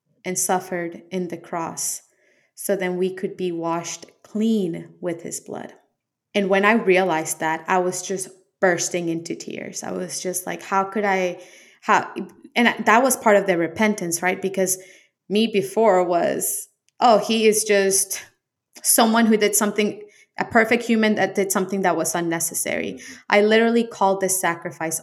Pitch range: 175-195 Hz